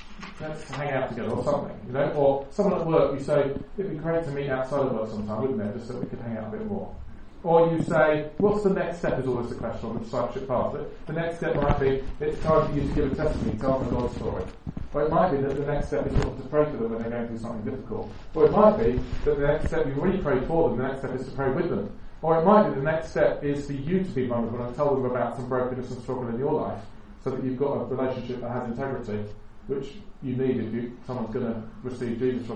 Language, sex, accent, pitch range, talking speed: English, male, British, 120-155 Hz, 280 wpm